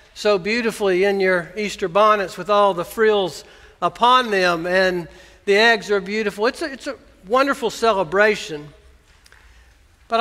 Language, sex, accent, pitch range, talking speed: English, male, American, 190-245 Hz, 135 wpm